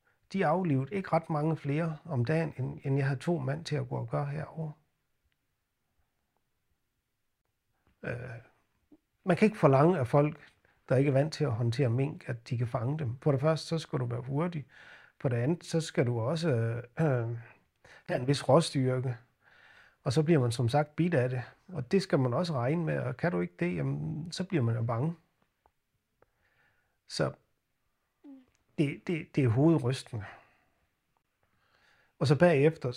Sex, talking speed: male, 170 wpm